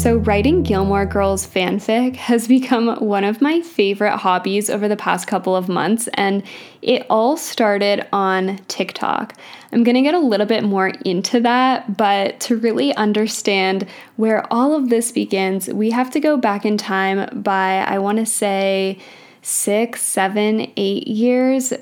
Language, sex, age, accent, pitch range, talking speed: English, female, 10-29, American, 195-235 Hz, 160 wpm